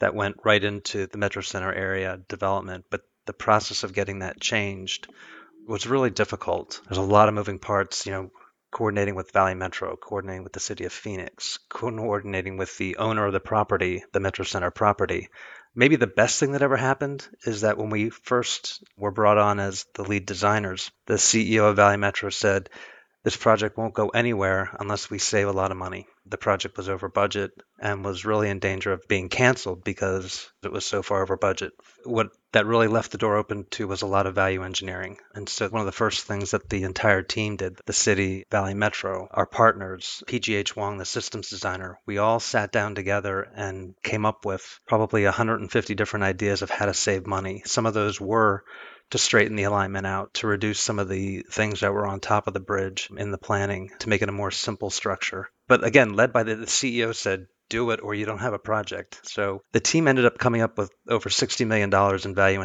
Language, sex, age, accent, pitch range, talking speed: English, male, 30-49, American, 95-110 Hz, 210 wpm